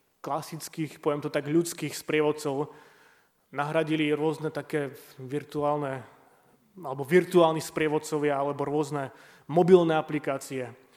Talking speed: 95 wpm